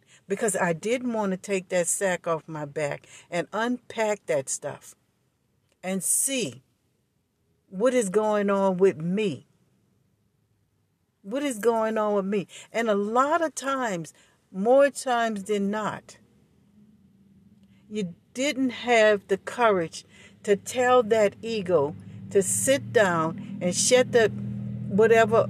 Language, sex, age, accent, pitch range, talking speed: English, female, 60-79, American, 170-215 Hz, 125 wpm